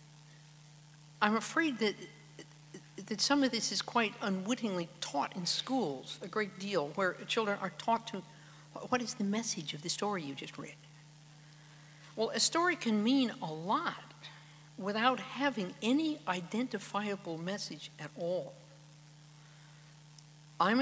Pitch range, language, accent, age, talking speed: 150-215 Hz, English, American, 60-79, 135 wpm